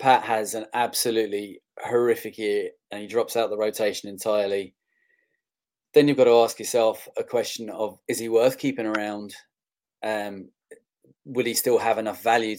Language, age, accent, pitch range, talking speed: English, 20-39, British, 110-150 Hz, 160 wpm